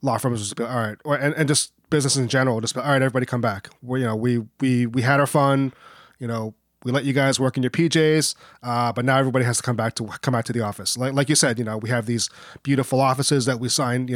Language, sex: English, male